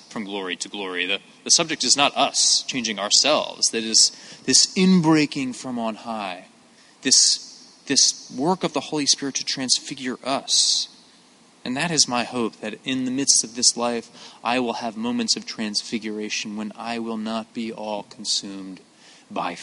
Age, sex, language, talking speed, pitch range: 30-49, male, English, 170 wpm, 100-130 Hz